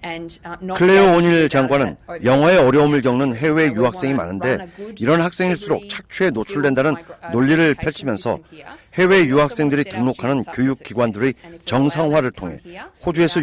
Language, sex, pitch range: Korean, male, 125-165 Hz